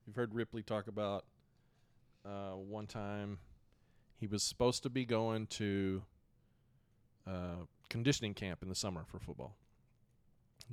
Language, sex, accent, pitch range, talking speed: English, male, American, 100-120 Hz, 140 wpm